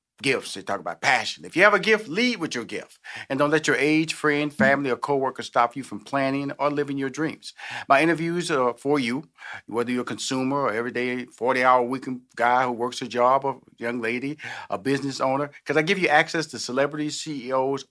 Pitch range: 115-145 Hz